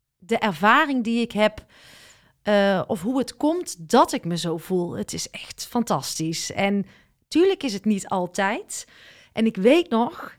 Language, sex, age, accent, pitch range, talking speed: Dutch, female, 40-59, Dutch, 185-240 Hz, 170 wpm